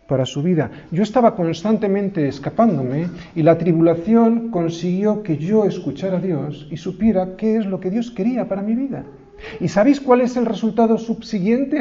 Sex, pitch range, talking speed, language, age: male, 145-225 Hz, 175 wpm, Spanish, 40-59